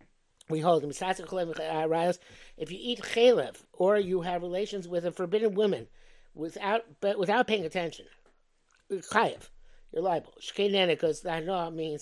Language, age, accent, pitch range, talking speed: English, 50-69, American, 160-215 Hz, 145 wpm